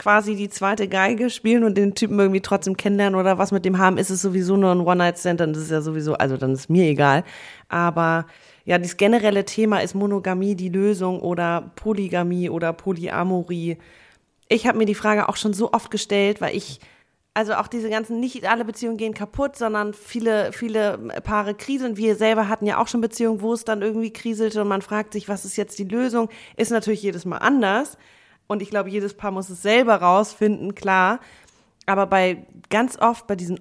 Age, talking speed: 20-39, 200 wpm